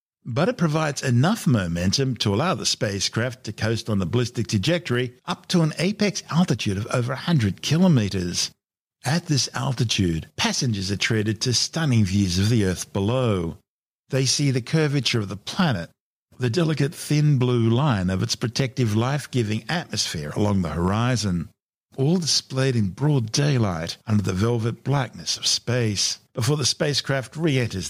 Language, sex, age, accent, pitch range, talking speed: English, male, 50-69, Australian, 105-145 Hz, 155 wpm